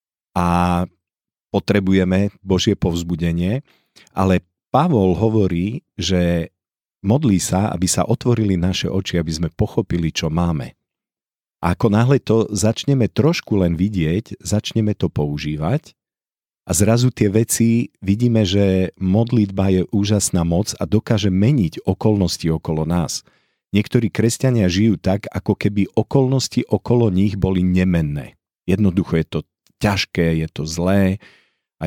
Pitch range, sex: 90-110 Hz, male